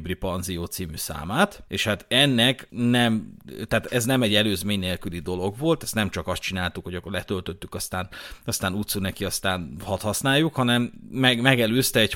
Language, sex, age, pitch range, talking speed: Hungarian, male, 30-49, 95-120 Hz, 165 wpm